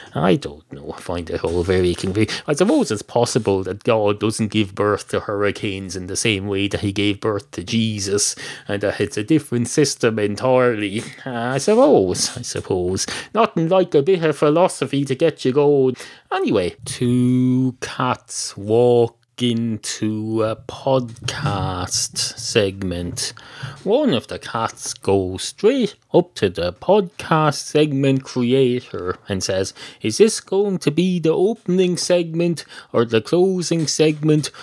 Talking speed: 145 wpm